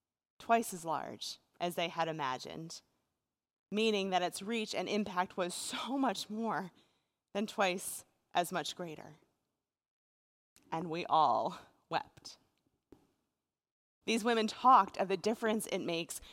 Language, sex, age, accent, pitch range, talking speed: English, female, 30-49, American, 180-225 Hz, 125 wpm